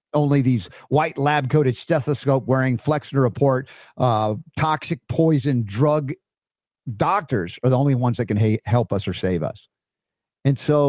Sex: male